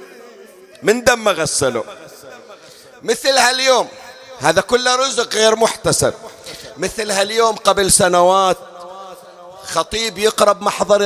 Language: Arabic